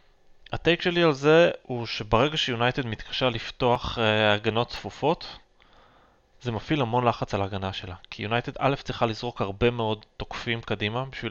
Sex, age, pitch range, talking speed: male, 20-39, 110-145 Hz, 155 wpm